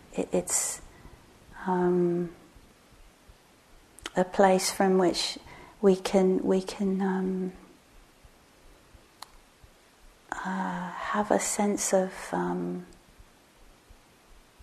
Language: English